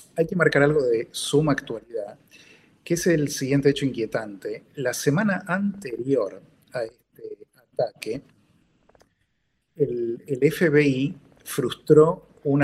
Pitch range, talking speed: 125-155 Hz, 115 wpm